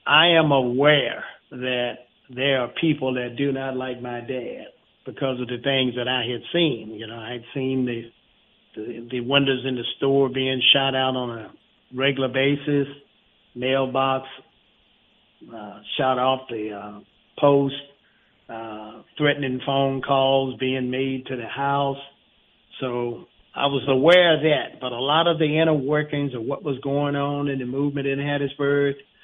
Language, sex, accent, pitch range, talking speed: English, male, American, 125-140 Hz, 160 wpm